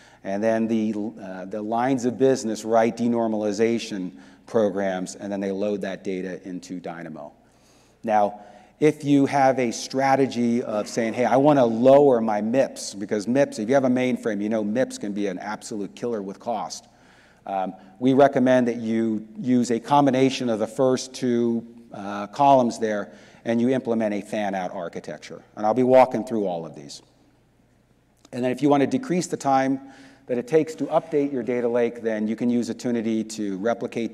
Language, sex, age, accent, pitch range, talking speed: English, male, 40-59, American, 105-130 Hz, 180 wpm